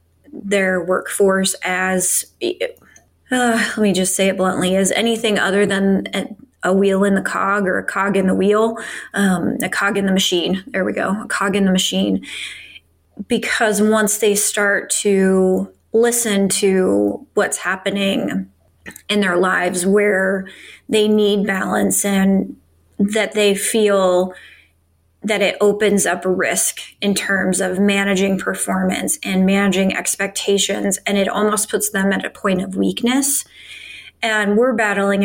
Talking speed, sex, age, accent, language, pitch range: 145 wpm, female, 20-39, American, English, 190-205 Hz